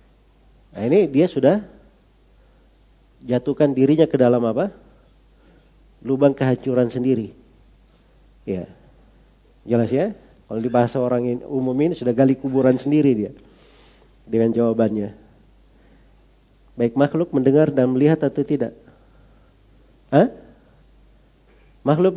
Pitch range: 125-160 Hz